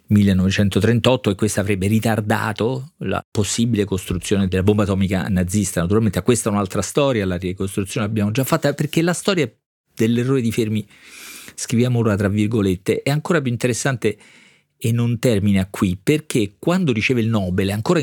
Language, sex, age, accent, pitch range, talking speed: Italian, male, 40-59, native, 95-120 Hz, 155 wpm